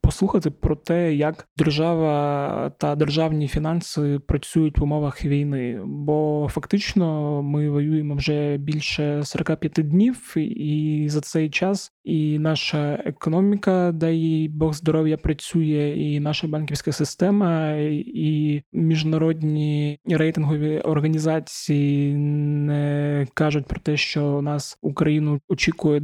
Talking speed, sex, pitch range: 110 wpm, male, 145-160 Hz